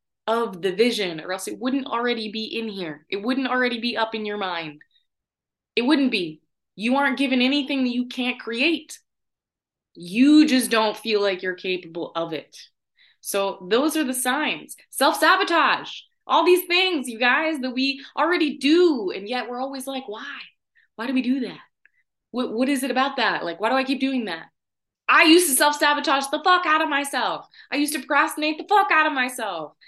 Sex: female